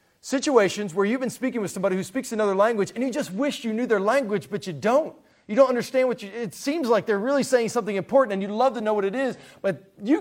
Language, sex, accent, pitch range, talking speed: English, male, American, 170-225 Hz, 265 wpm